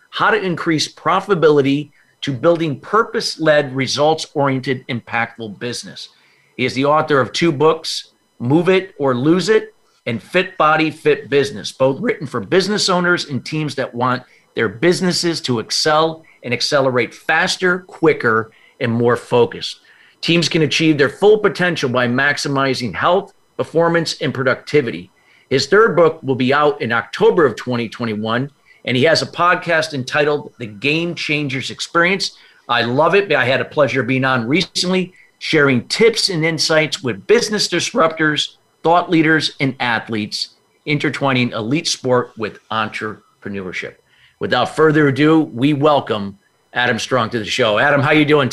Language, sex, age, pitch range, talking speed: English, male, 50-69, 130-170 Hz, 150 wpm